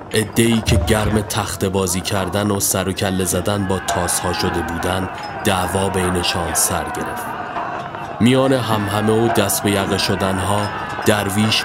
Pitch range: 95-115 Hz